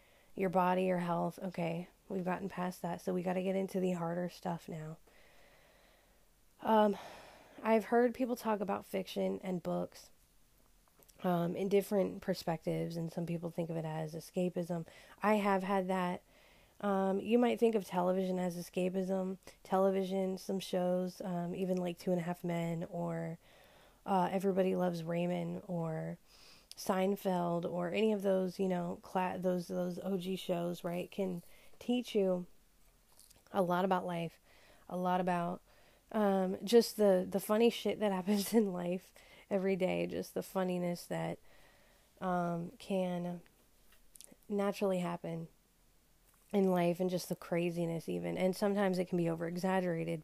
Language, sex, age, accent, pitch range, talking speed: English, female, 20-39, American, 175-195 Hz, 150 wpm